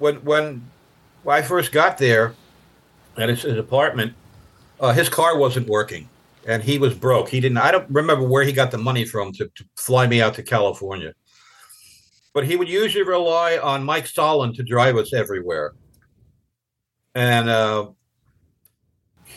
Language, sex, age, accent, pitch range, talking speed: English, male, 60-79, American, 120-145 Hz, 160 wpm